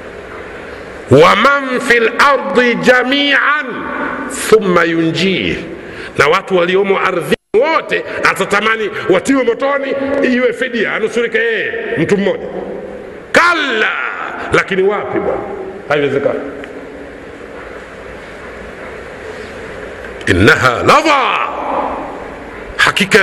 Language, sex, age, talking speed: Swahili, male, 60-79, 70 wpm